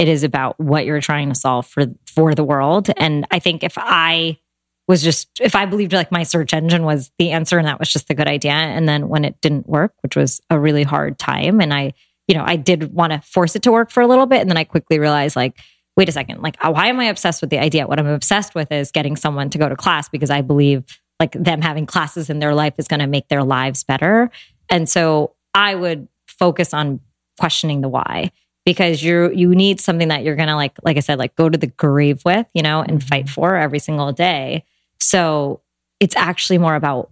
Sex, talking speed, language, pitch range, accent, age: female, 240 wpm, English, 145-175 Hz, American, 20-39